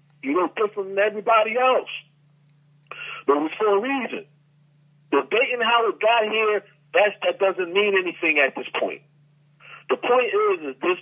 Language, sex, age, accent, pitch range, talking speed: English, male, 50-69, American, 150-250 Hz, 160 wpm